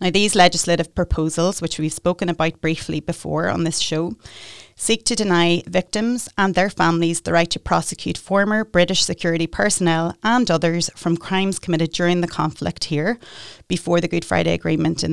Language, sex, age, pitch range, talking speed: English, female, 30-49, 160-185 Hz, 170 wpm